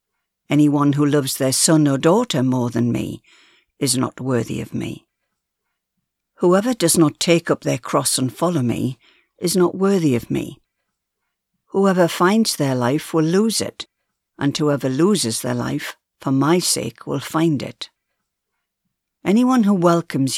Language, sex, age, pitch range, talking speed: English, female, 60-79, 135-175 Hz, 150 wpm